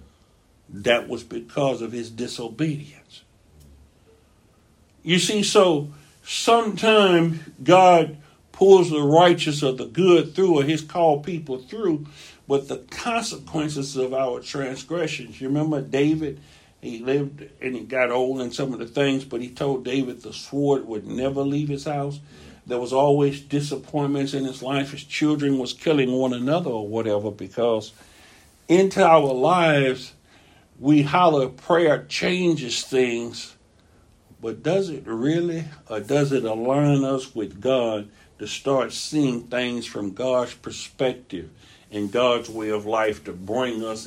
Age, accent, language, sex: 60-79, American, English, male